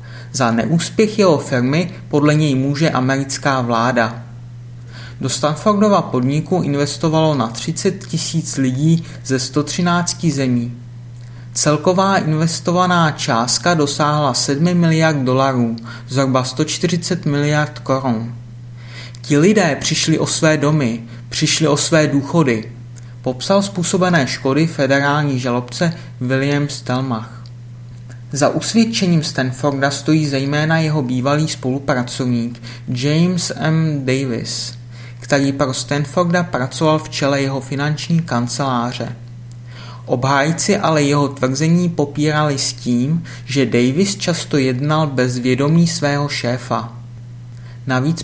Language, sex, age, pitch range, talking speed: Czech, male, 30-49, 120-155 Hz, 105 wpm